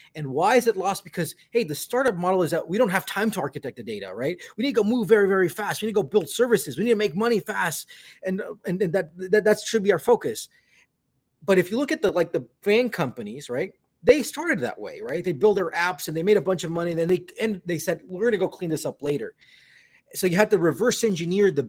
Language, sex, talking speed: English, male, 270 wpm